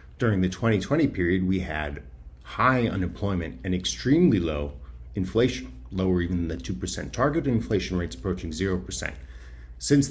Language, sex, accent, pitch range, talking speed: English, male, American, 75-100 Hz, 135 wpm